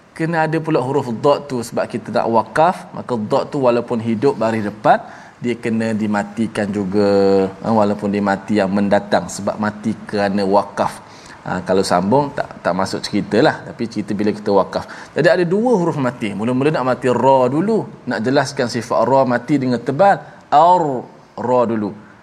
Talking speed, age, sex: 165 wpm, 20-39, male